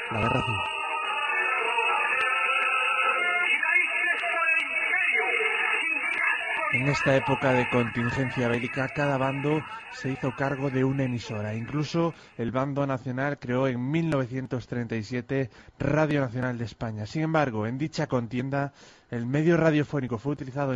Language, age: Spanish, 30-49